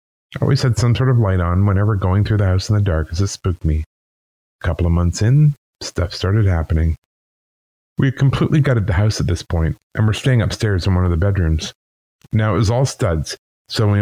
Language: English